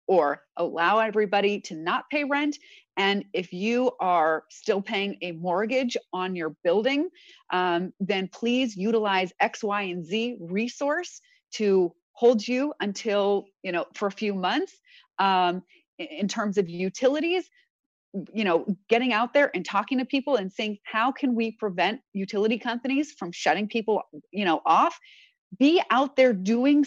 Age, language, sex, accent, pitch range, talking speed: 30-49, English, female, American, 185-255 Hz, 155 wpm